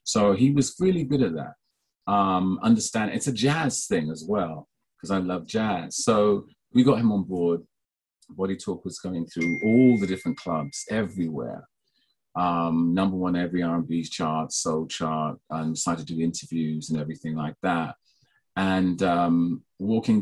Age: 30-49